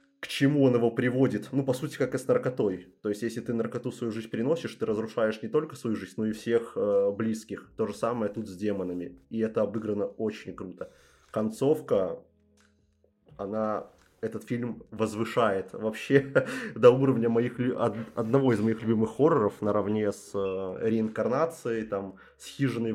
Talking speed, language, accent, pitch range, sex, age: 165 wpm, Russian, native, 105-130 Hz, male, 20-39